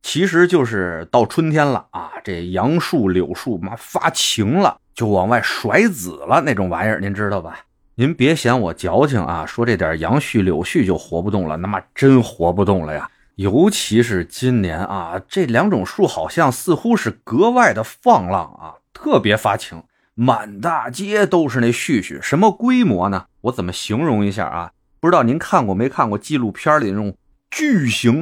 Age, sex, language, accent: 30-49, male, Chinese, native